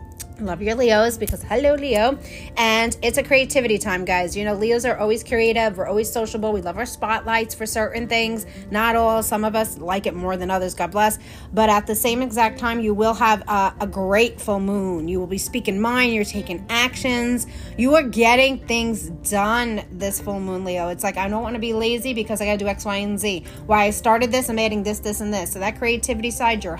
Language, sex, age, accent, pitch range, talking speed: English, female, 30-49, American, 200-235 Hz, 230 wpm